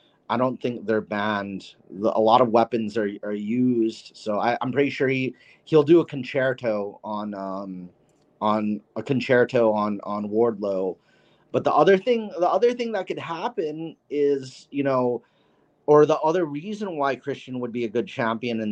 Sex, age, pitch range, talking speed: male, 30-49, 115-135 Hz, 175 wpm